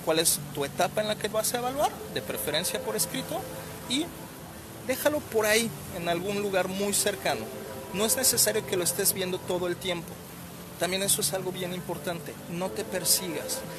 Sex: male